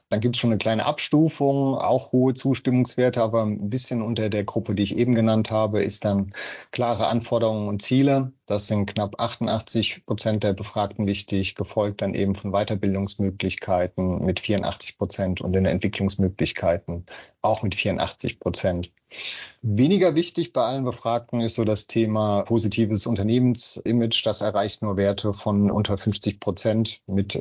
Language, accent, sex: German, German, male